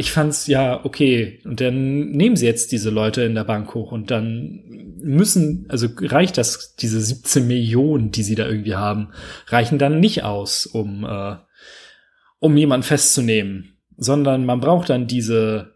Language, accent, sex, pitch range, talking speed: German, German, male, 110-150 Hz, 165 wpm